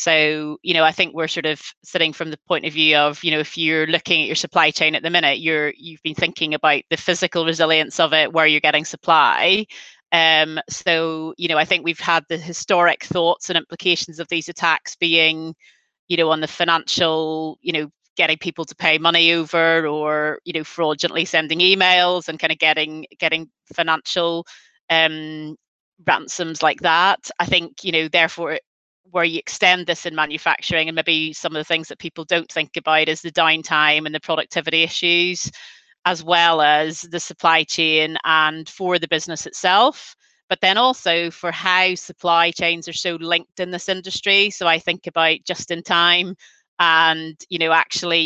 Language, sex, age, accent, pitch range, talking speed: English, female, 30-49, British, 155-175 Hz, 190 wpm